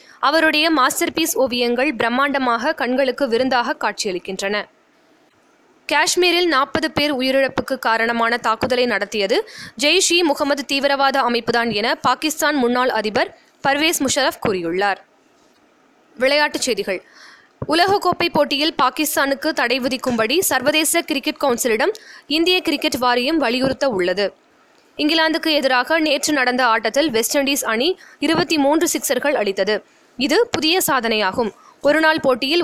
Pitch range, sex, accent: 245-320 Hz, female, native